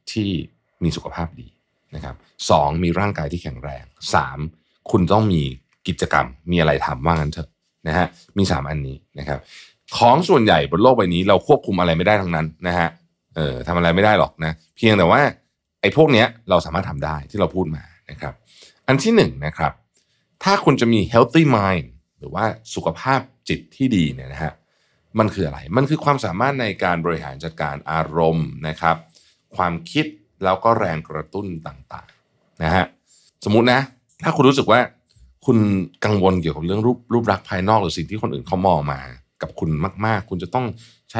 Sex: male